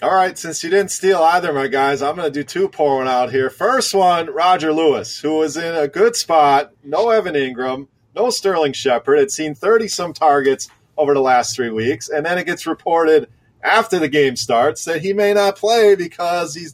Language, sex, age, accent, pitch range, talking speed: English, male, 30-49, American, 140-195 Hz, 210 wpm